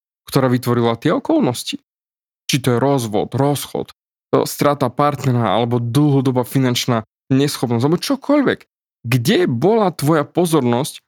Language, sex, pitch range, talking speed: Slovak, male, 120-165 Hz, 115 wpm